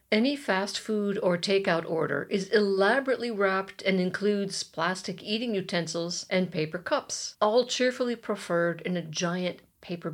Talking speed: 140 wpm